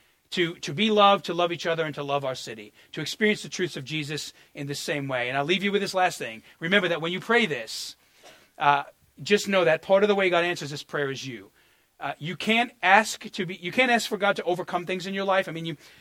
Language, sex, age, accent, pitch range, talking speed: English, male, 40-59, American, 140-190 Hz, 265 wpm